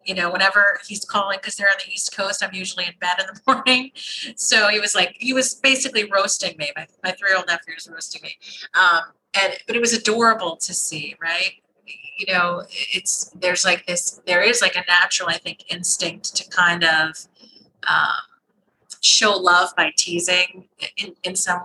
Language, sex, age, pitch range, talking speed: English, female, 30-49, 175-200 Hz, 185 wpm